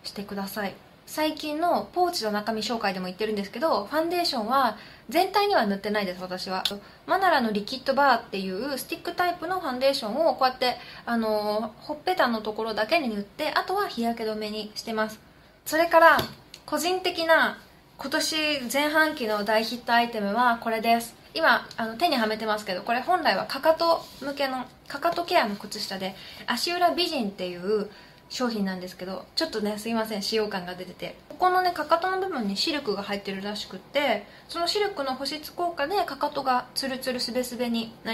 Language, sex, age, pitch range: Japanese, female, 20-39, 210-310 Hz